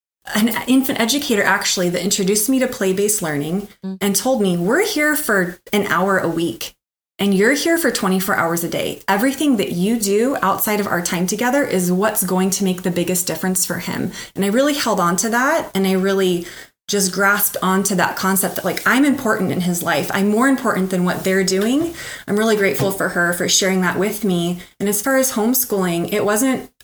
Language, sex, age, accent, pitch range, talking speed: English, female, 30-49, American, 185-225 Hz, 210 wpm